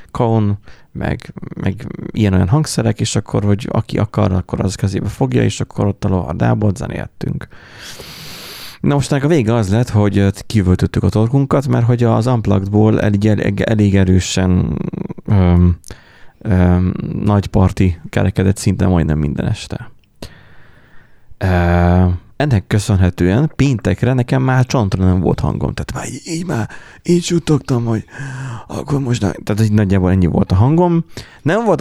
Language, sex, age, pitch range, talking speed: Hungarian, male, 30-49, 95-125 Hz, 145 wpm